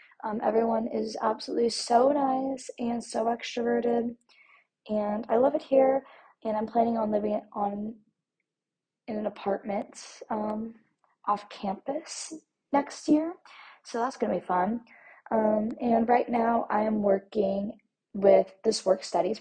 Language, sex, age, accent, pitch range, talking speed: English, female, 20-39, American, 195-240 Hz, 135 wpm